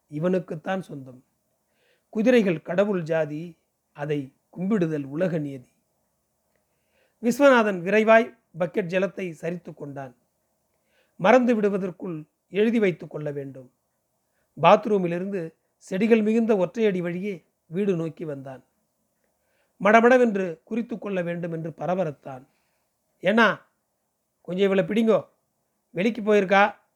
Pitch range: 160-215 Hz